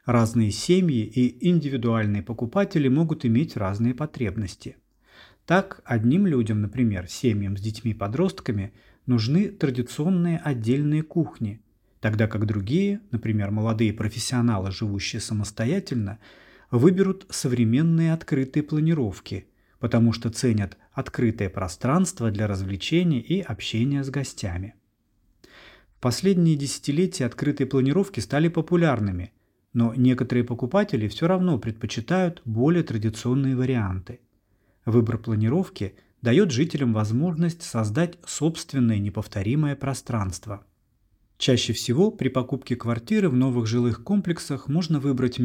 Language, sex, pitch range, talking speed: Russian, male, 110-155 Hz, 105 wpm